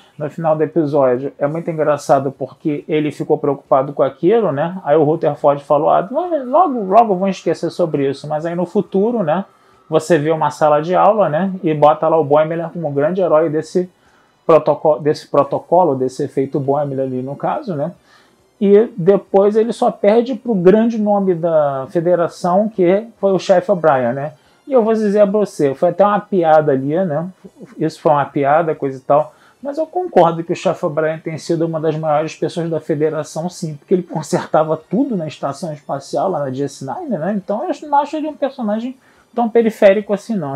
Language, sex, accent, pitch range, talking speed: Portuguese, male, Brazilian, 150-200 Hz, 190 wpm